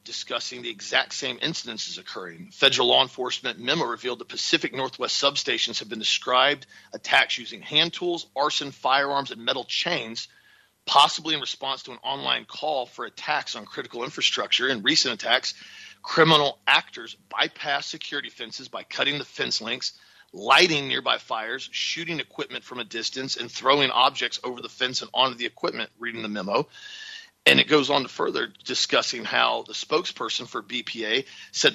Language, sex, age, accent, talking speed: English, male, 40-59, American, 165 wpm